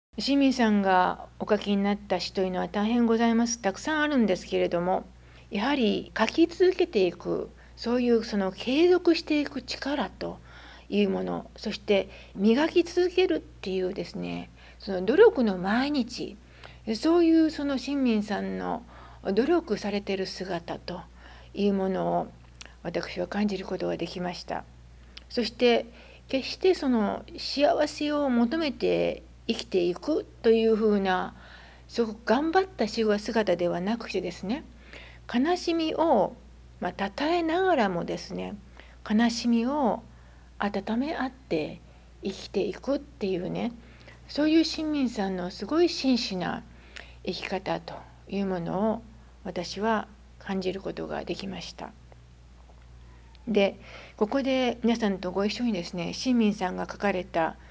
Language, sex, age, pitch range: English, female, 60-79, 185-260 Hz